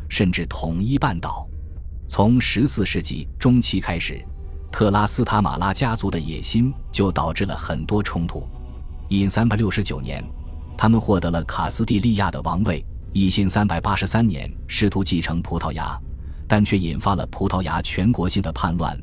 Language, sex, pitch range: Chinese, male, 80-105 Hz